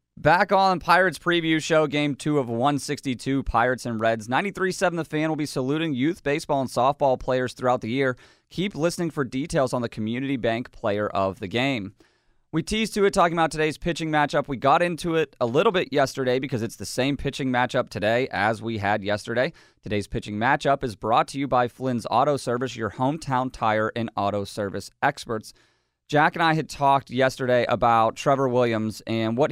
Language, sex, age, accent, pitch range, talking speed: English, male, 30-49, American, 115-145 Hz, 195 wpm